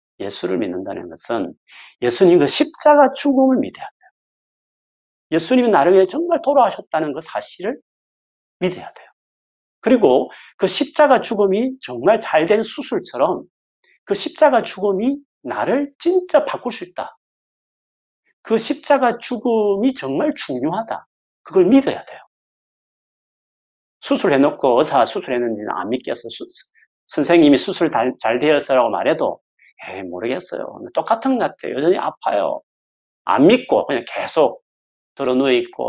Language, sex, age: Korean, male, 40-59